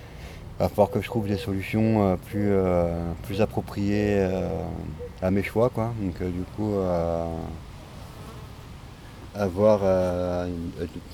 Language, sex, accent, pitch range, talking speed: French, male, French, 85-105 Hz, 135 wpm